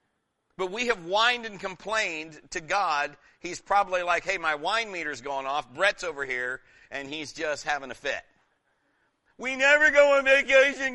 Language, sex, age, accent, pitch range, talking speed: English, male, 60-79, American, 160-210 Hz, 170 wpm